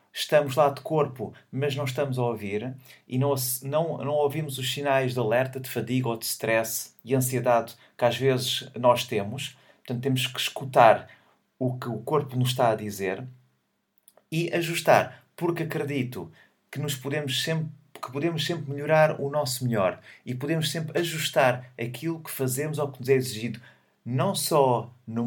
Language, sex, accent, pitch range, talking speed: Portuguese, male, Portuguese, 120-145 Hz, 160 wpm